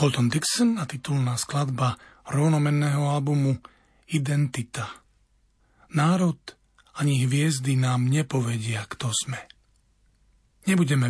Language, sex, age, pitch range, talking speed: Slovak, male, 40-59, 115-145 Hz, 85 wpm